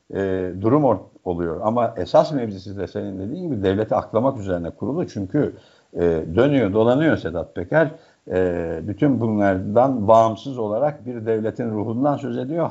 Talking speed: 145 wpm